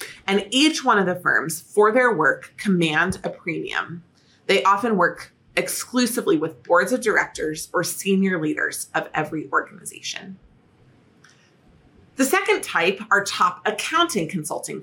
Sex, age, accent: female, 30-49, American